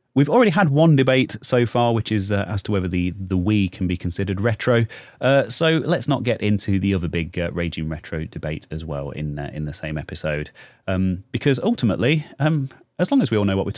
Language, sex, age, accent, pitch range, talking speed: English, male, 30-49, British, 85-125 Hz, 230 wpm